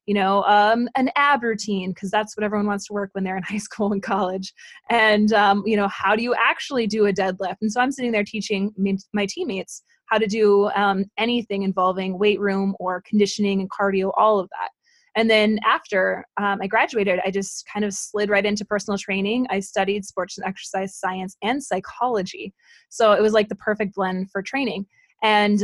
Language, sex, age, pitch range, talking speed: English, female, 20-39, 195-220 Hz, 205 wpm